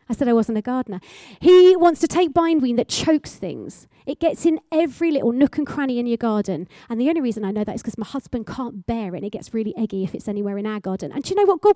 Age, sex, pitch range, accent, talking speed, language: 30-49, female, 225-300 Hz, British, 285 wpm, English